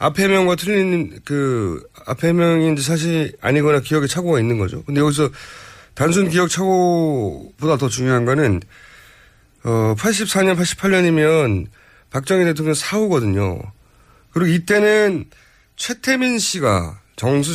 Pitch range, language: 110-165 Hz, Korean